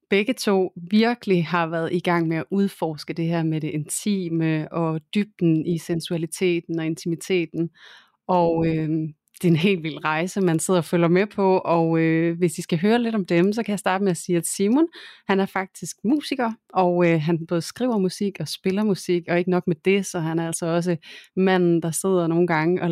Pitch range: 165-190 Hz